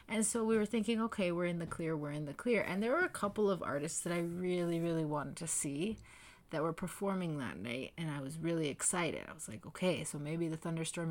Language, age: English, 20-39